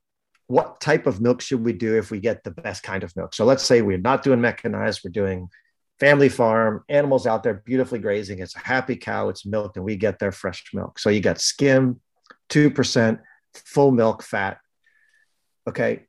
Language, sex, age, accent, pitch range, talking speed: English, male, 40-59, American, 105-135 Hz, 195 wpm